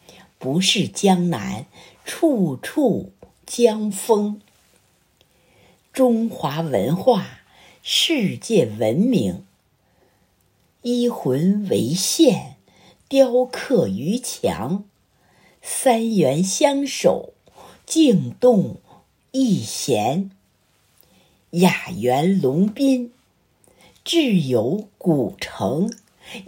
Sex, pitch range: female, 175-250 Hz